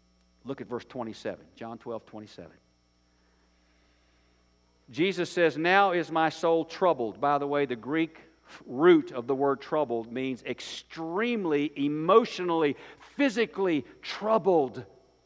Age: 50-69